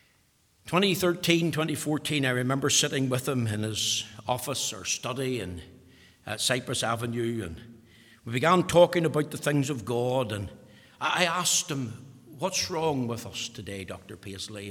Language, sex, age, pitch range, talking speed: English, male, 60-79, 115-190 Hz, 135 wpm